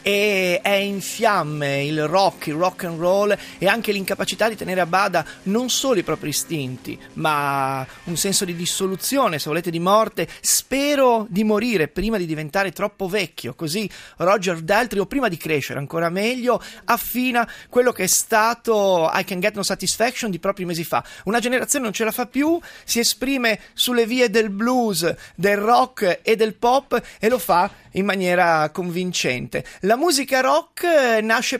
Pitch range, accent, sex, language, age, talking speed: 180-235 Hz, native, male, Italian, 30-49, 170 wpm